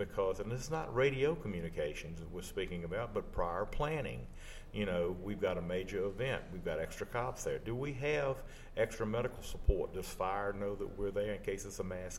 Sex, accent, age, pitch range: male, American, 50-69, 90-110 Hz